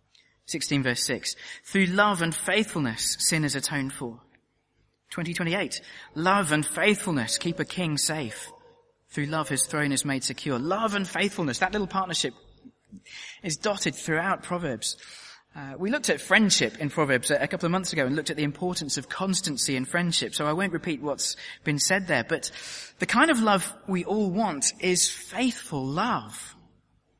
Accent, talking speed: British, 170 wpm